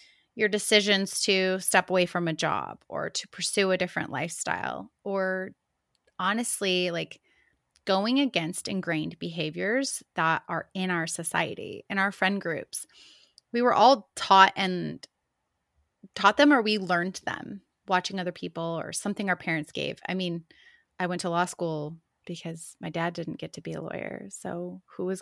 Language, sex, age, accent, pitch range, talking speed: English, female, 20-39, American, 180-240 Hz, 160 wpm